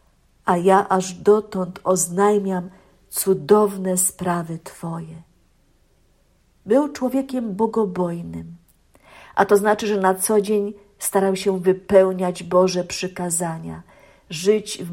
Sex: female